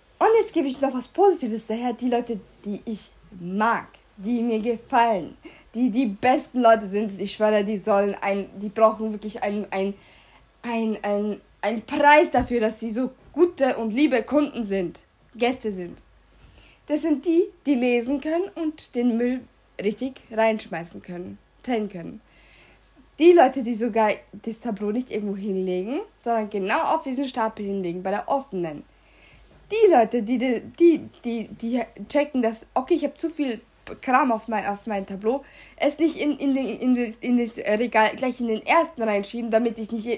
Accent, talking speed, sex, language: German, 165 wpm, female, German